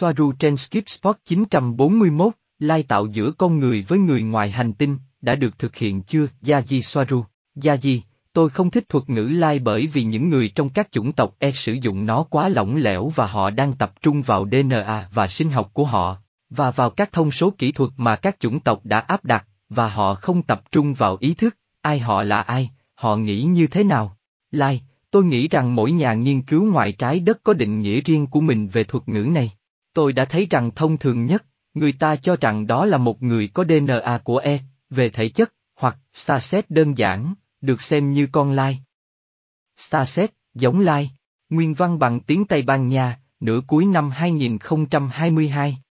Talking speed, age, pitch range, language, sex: 205 wpm, 20-39, 120-160 Hz, Vietnamese, male